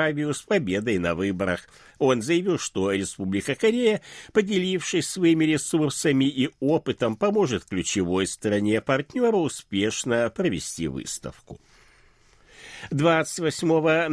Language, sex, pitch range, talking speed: Russian, male, 100-170 Hz, 95 wpm